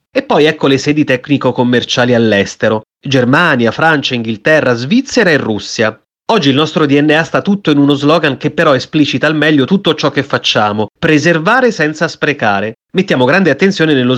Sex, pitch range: male, 125-165 Hz